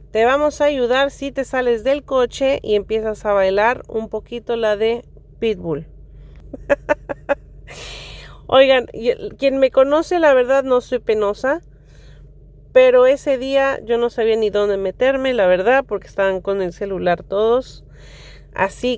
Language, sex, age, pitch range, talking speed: English, female, 40-59, 210-270 Hz, 140 wpm